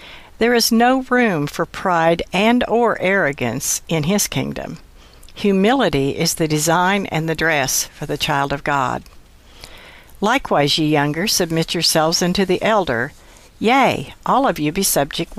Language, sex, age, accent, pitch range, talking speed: English, female, 60-79, American, 150-195 Hz, 150 wpm